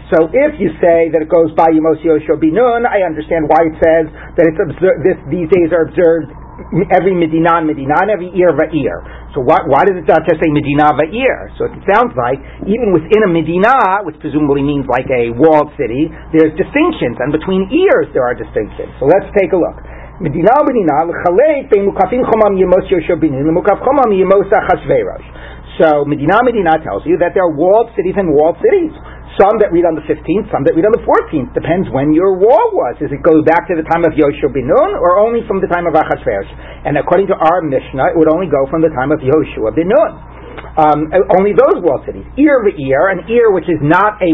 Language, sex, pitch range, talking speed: English, male, 160-220 Hz, 200 wpm